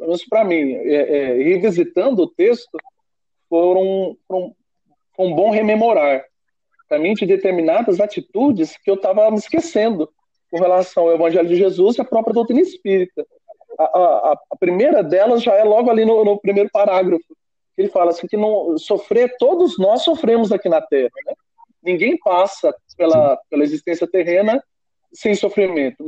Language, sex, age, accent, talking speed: Portuguese, male, 40-59, Brazilian, 155 wpm